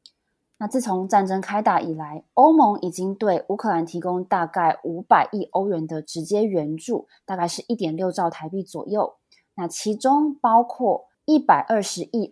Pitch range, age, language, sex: 170-220 Hz, 20-39, Chinese, female